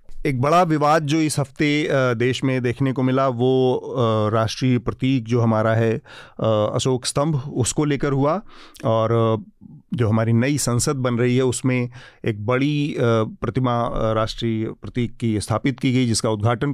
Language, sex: Hindi, male